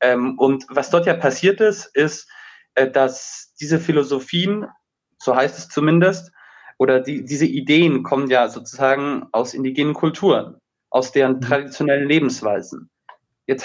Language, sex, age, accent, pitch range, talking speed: German, male, 20-39, German, 130-160 Hz, 125 wpm